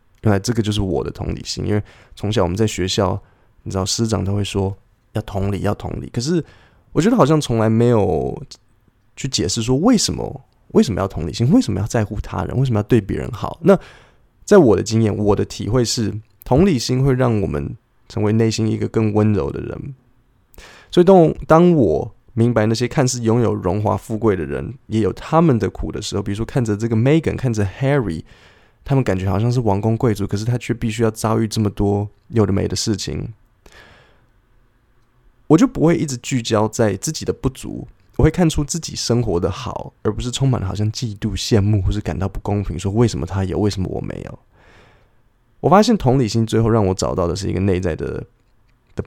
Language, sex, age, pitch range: Chinese, male, 20-39, 100-120 Hz